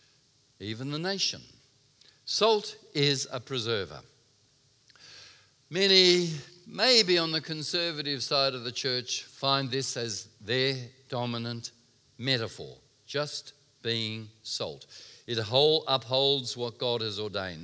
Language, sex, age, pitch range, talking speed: English, male, 50-69, 110-140 Hz, 105 wpm